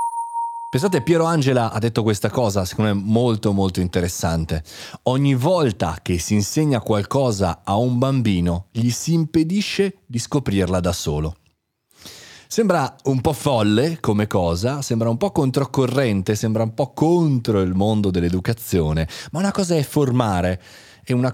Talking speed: 145 wpm